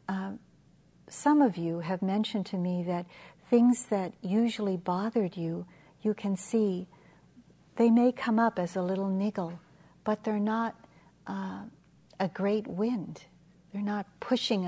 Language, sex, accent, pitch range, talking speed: English, female, American, 175-205 Hz, 145 wpm